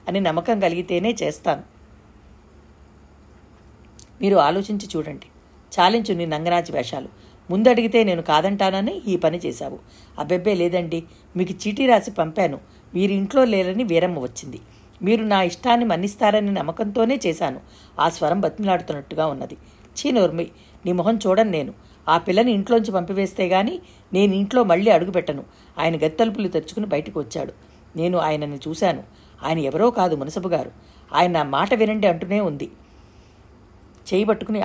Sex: female